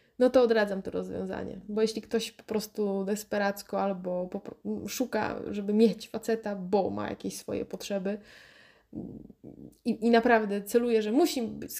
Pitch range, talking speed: 195-235 Hz, 140 wpm